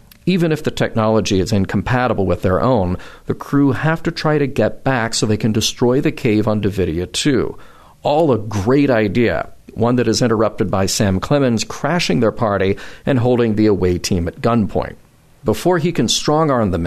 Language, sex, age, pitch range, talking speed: English, male, 40-59, 100-130 Hz, 185 wpm